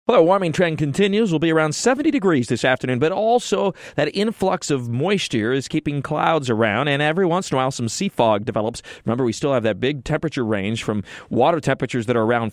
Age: 30-49